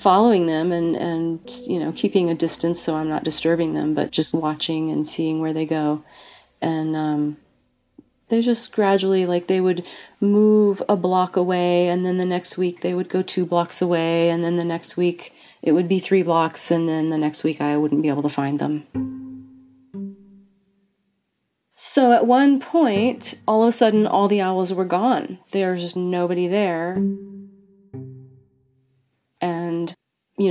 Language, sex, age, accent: English, female, 30-49, American